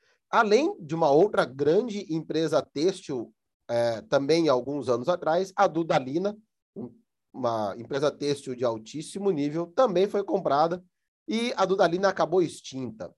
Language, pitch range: Portuguese, 135-200 Hz